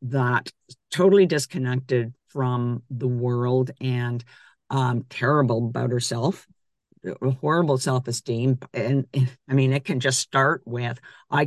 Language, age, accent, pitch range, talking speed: English, 50-69, American, 130-165 Hz, 115 wpm